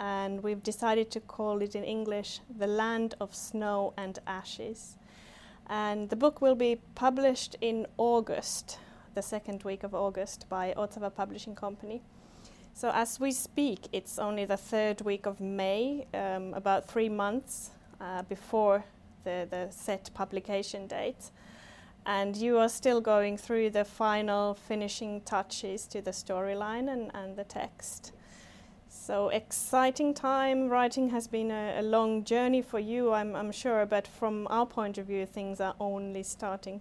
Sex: female